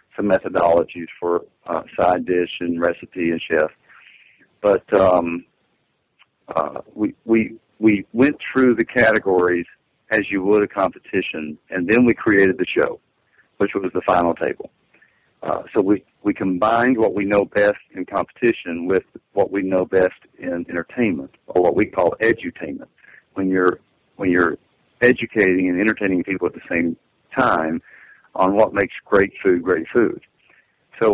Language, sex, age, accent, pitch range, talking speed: English, male, 50-69, American, 90-105 Hz, 150 wpm